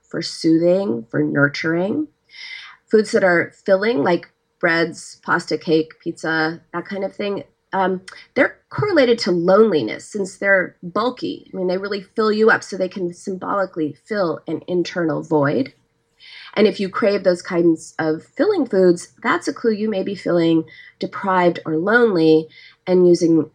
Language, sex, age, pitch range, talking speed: English, female, 30-49, 170-235 Hz, 155 wpm